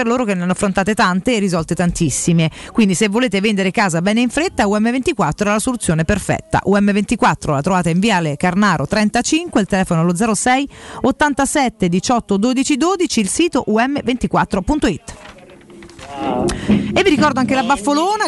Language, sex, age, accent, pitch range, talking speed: Italian, female, 40-59, native, 190-260 Hz, 150 wpm